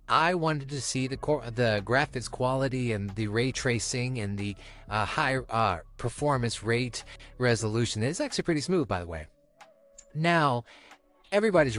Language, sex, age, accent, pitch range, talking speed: English, male, 30-49, American, 110-155 Hz, 150 wpm